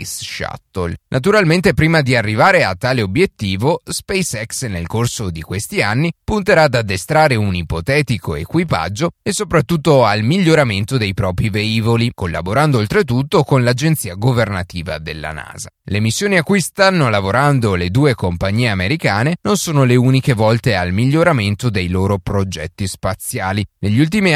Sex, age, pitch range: male, 30-49, 100-155 Hz